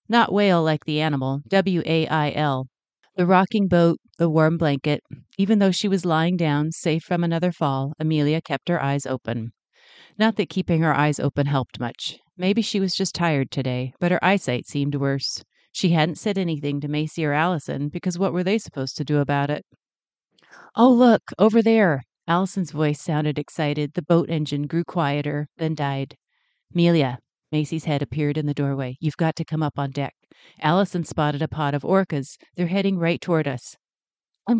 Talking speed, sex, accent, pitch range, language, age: 180 wpm, female, American, 145-180 Hz, English, 40-59